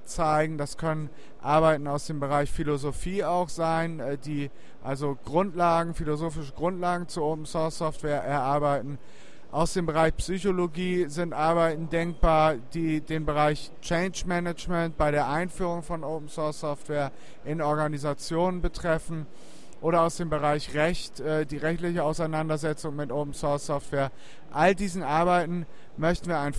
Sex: male